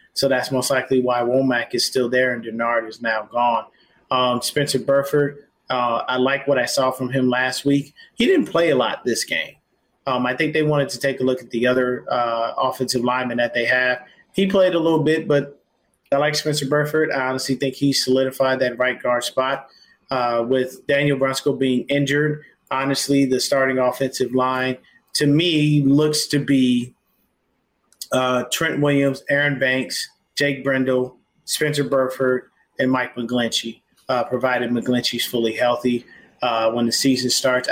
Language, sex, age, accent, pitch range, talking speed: English, male, 30-49, American, 125-140 Hz, 175 wpm